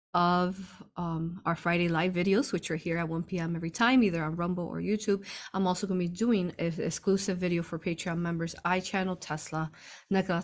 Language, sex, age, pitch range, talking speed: English, female, 20-39, 165-190 Hz, 200 wpm